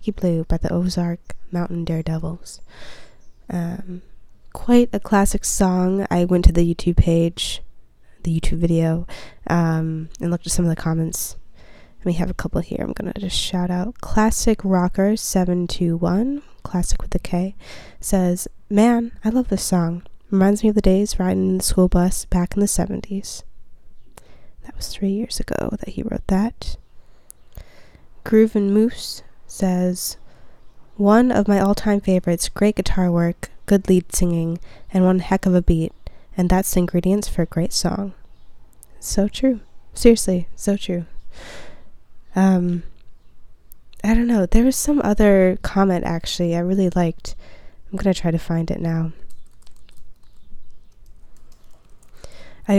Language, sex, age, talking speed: English, female, 10-29, 145 wpm